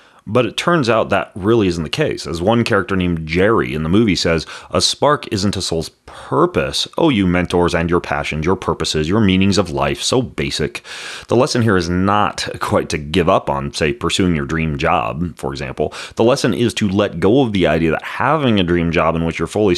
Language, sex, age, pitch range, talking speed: English, male, 30-49, 80-105 Hz, 220 wpm